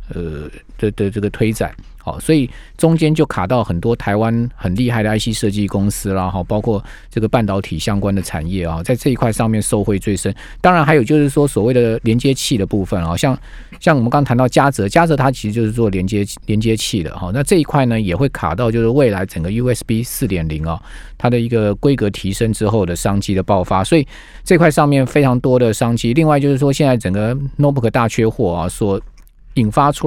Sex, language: male, Chinese